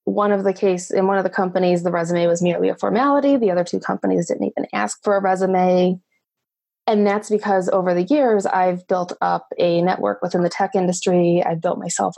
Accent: American